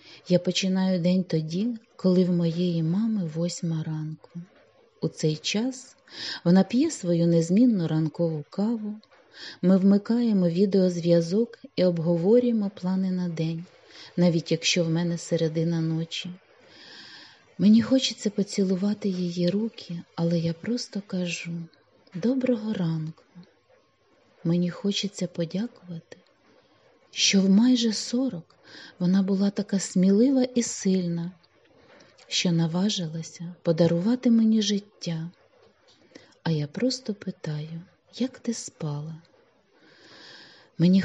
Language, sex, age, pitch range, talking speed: Ukrainian, female, 30-49, 170-220 Hz, 100 wpm